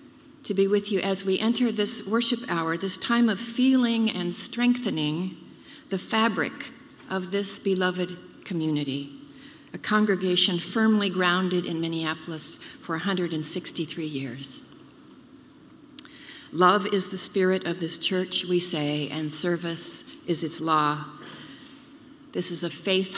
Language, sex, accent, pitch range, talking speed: English, female, American, 170-230 Hz, 125 wpm